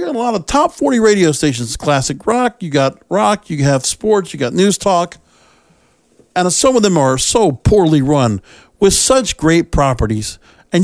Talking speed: 190 wpm